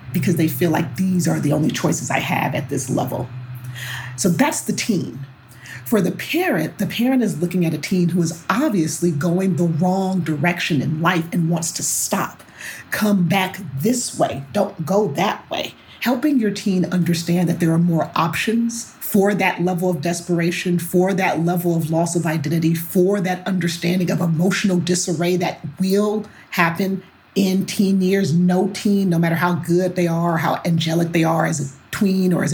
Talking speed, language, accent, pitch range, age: 185 wpm, English, American, 165-190 Hz, 40-59